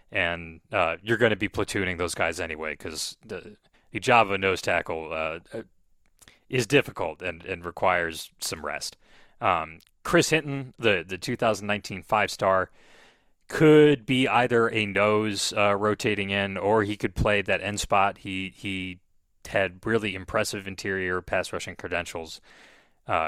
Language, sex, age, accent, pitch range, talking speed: English, male, 30-49, American, 90-115 Hz, 145 wpm